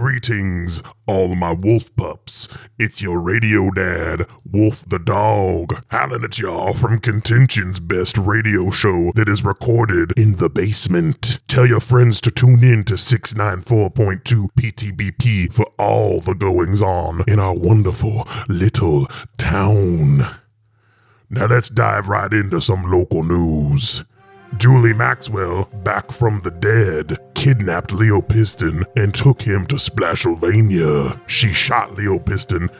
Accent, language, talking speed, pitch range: American, English, 130 wpm, 95-115 Hz